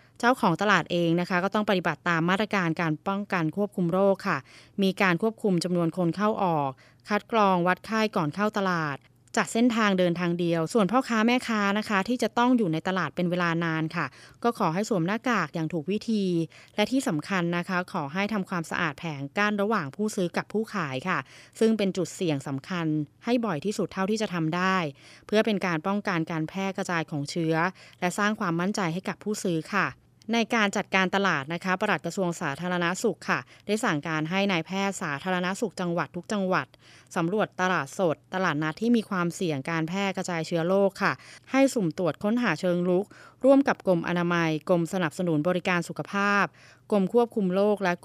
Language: Thai